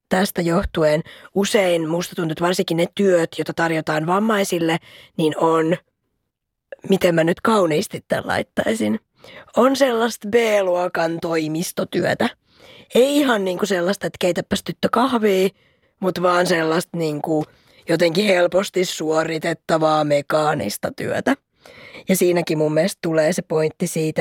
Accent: native